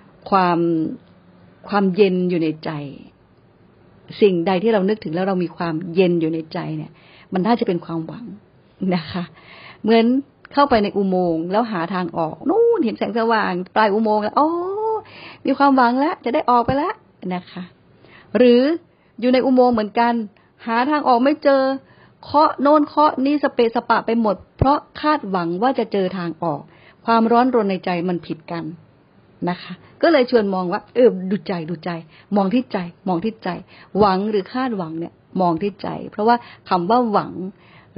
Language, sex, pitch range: Thai, female, 170-230 Hz